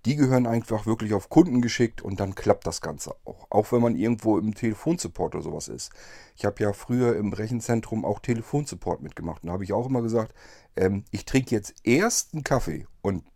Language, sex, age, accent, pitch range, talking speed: German, male, 40-59, German, 100-125 Hz, 205 wpm